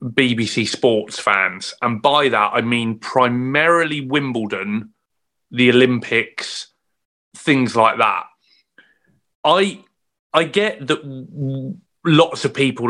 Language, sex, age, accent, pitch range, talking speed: English, male, 30-49, British, 125-165 Hz, 100 wpm